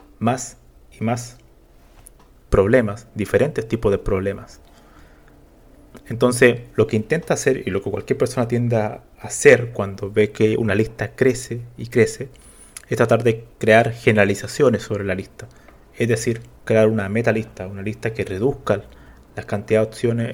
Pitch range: 95-120 Hz